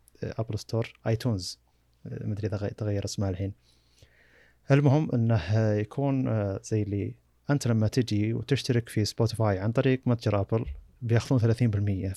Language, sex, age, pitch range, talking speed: Arabic, male, 20-39, 100-120 Hz, 130 wpm